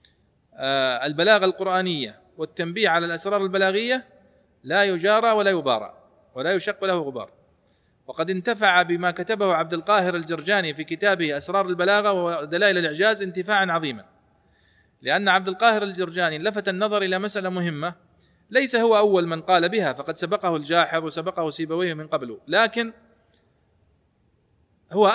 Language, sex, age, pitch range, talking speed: Arabic, male, 40-59, 155-200 Hz, 125 wpm